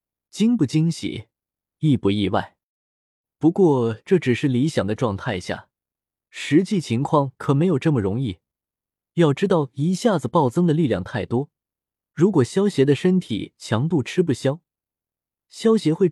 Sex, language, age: male, Chinese, 20-39